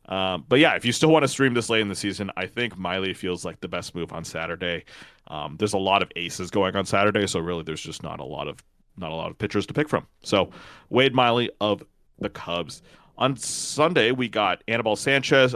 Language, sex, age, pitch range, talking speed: English, male, 30-49, 100-130 Hz, 235 wpm